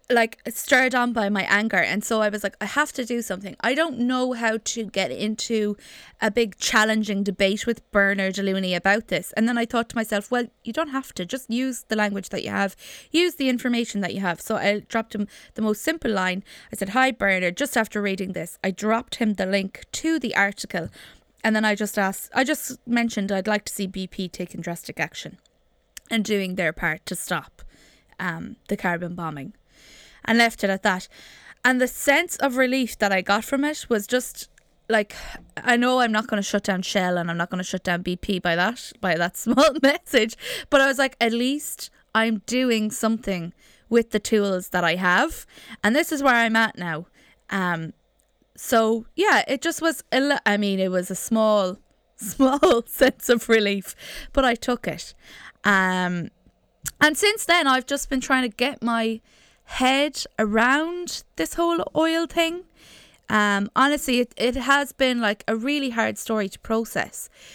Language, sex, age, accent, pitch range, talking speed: English, female, 20-39, Irish, 200-255 Hz, 195 wpm